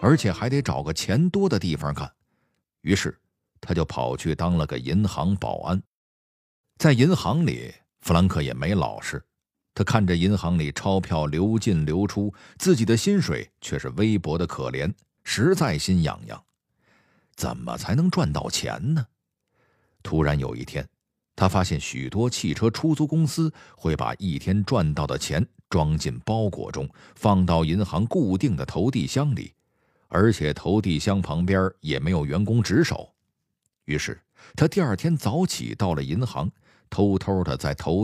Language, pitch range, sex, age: Chinese, 80-130 Hz, male, 50-69